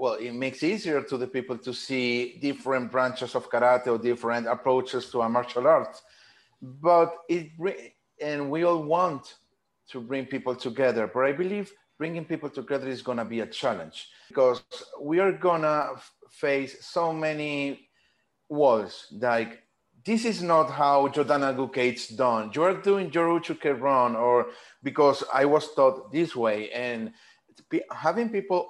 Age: 30-49